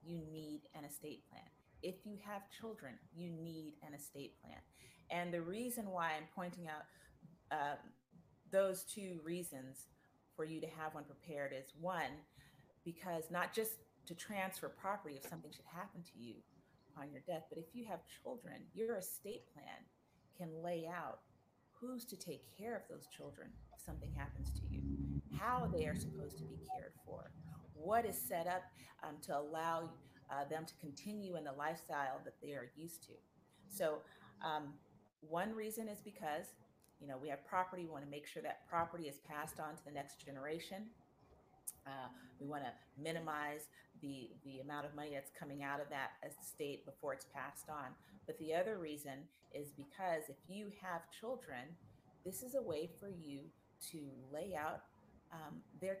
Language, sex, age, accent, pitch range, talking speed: English, female, 30-49, American, 145-180 Hz, 175 wpm